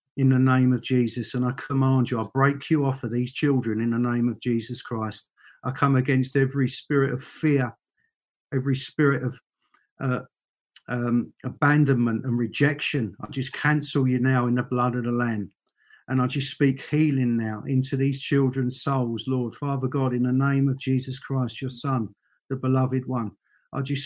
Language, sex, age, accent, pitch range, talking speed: English, male, 50-69, British, 125-140 Hz, 185 wpm